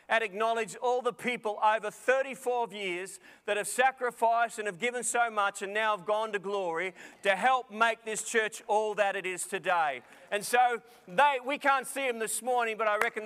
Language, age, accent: English, 40-59, Australian